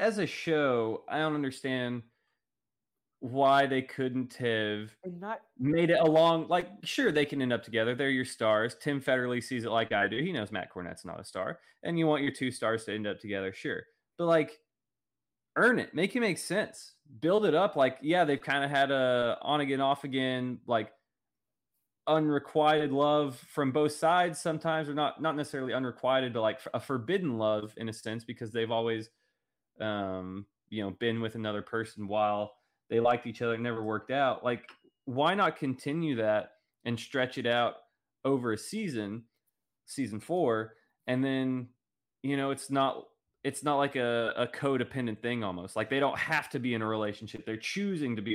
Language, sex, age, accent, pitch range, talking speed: English, male, 20-39, American, 110-145 Hz, 185 wpm